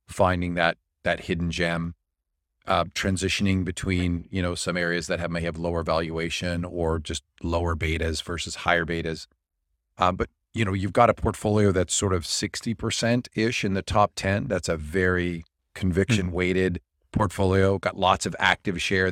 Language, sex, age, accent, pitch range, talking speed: English, male, 40-59, American, 85-100 Hz, 165 wpm